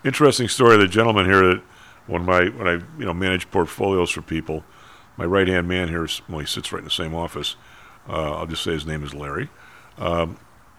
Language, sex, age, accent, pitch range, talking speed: English, male, 50-69, American, 80-100 Hz, 215 wpm